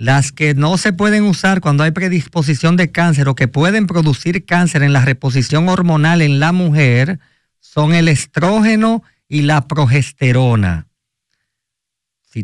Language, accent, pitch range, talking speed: Spanish, American, 130-170 Hz, 145 wpm